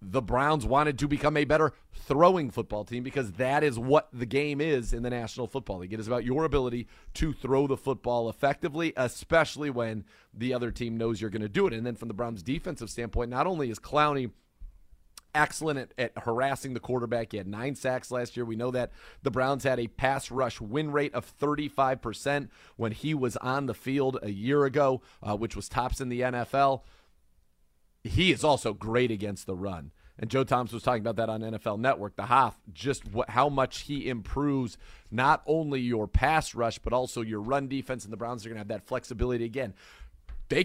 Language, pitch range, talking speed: English, 115-140 Hz, 210 wpm